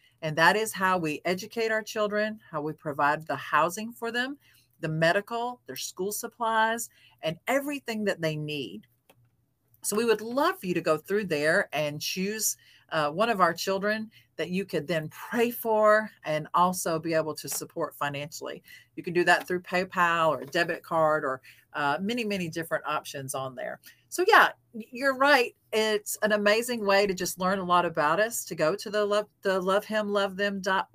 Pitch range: 155-215 Hz